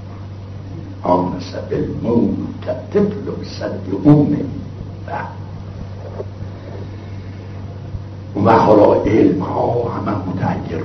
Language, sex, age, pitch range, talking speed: Persian, male, 60-79, 95-105 Hz, 55 wpm